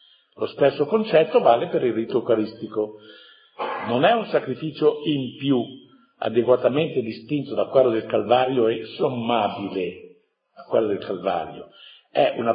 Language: Italian